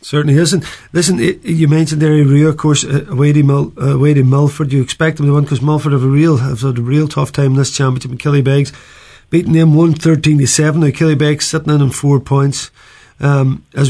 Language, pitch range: English, 135-155 Hz